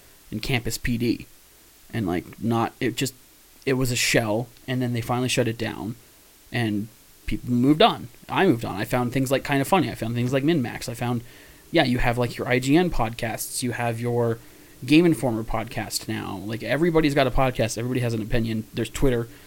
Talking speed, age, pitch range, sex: 205 wpm, 20-39, 110-140 Hz, male